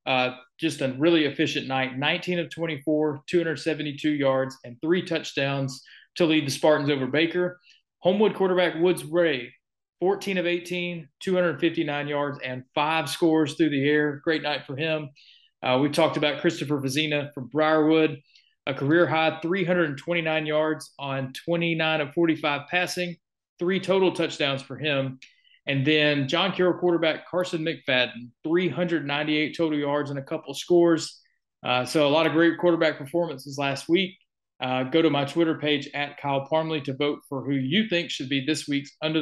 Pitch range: 145-170 Hz